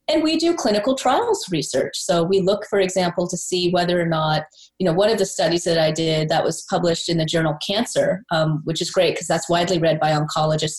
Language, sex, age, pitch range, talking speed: English, female, 30-49, 175-250 Hz, 235 wpm